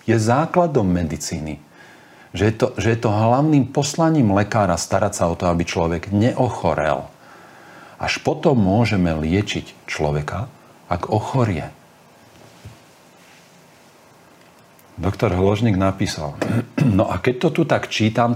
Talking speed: 120 wpm